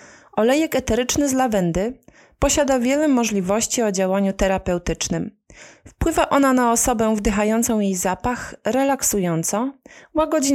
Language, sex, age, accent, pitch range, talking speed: Polish, female, 30-49, native, 195-270 Hz, 110 wpm